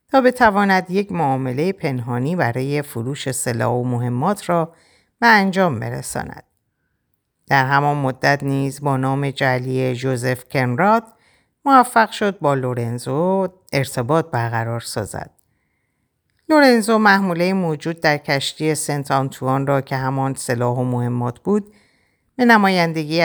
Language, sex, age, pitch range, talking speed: Persian, female, 50-69, 130-190 Hz, 120 wpm